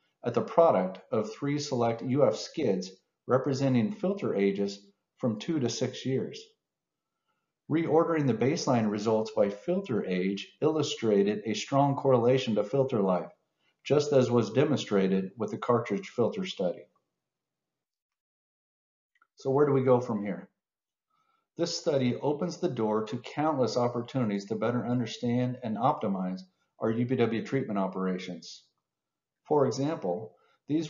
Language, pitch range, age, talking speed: English, 105-140 Hz, 50-69, 130 wpm